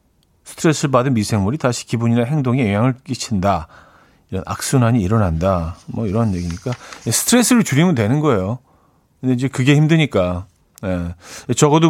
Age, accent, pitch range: 40-59, native, 100-150 Hz